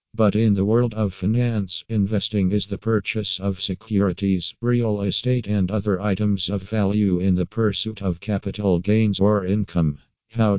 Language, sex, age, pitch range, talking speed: Malay, male, 50-69, 95-110 Hz, 160 wpm